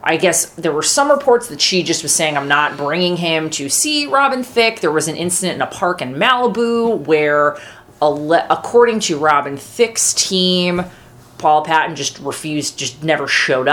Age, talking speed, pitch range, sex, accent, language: 30-49, 180 wpm, 140-175 Hz, female, American, English